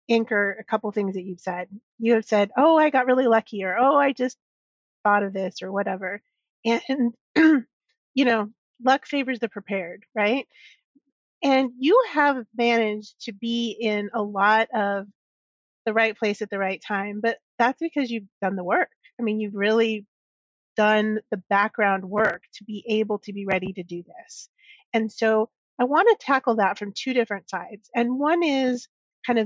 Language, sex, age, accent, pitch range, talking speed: English, female, 30-49, American, 205-255 Hz, 185 wpm